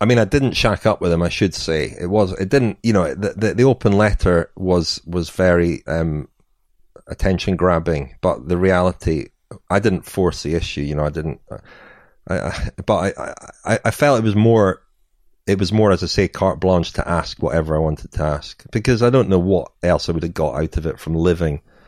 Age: 30-49